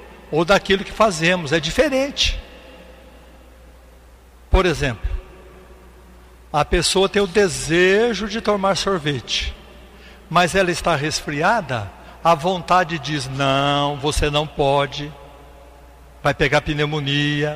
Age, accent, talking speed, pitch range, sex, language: 60-79, Brazilian, 105 wpm, 140-190 Hz, male, Portuguese